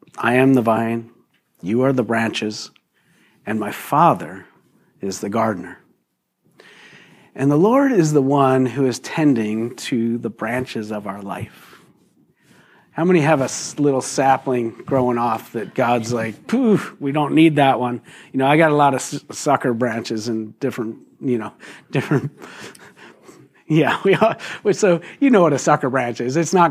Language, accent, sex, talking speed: English, American, male, 165 wpm